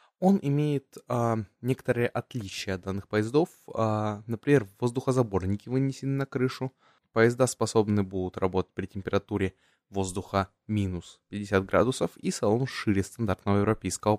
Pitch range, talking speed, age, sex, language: 100-125 Hz, 115 wpm, 20-39, male, Russian